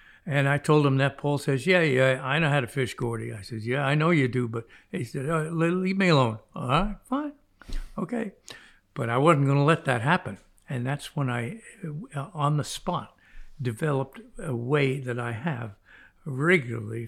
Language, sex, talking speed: English, male, 195 wpm